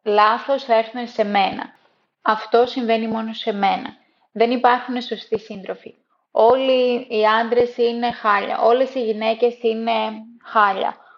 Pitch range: 215-265 Hz